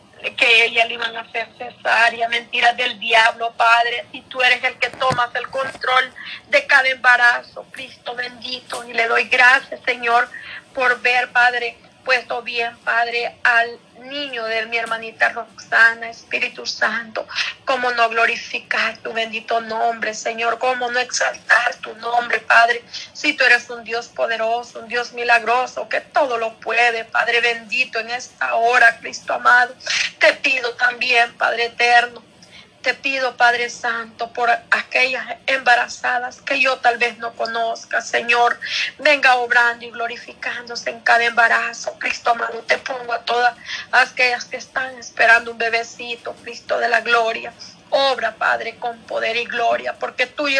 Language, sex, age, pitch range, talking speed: Spanish, female, 40-59, 230-250 Hz, 150 wpm